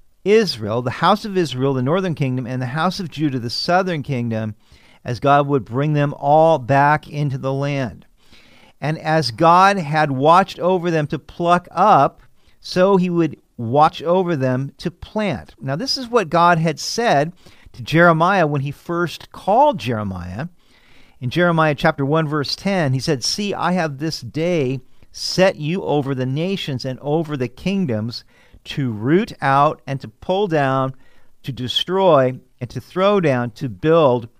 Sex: male